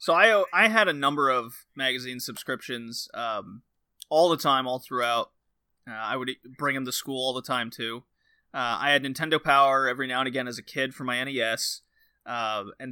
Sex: male